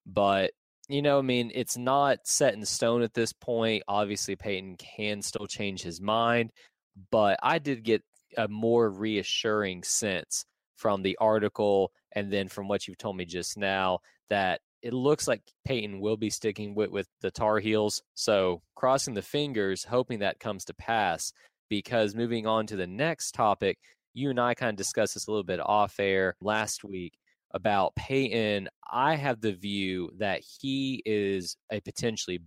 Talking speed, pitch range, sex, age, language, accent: 175 wpm, 95-115 Hz, male, 20-39, English, American